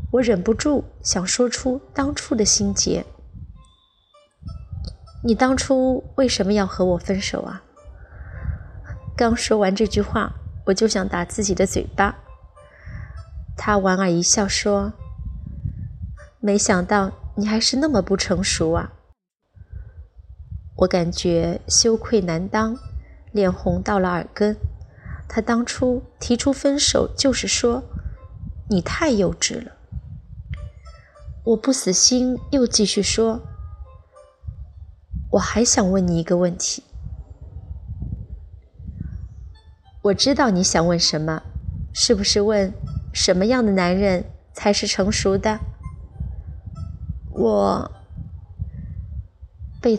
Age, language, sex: 20-39, Chinese, female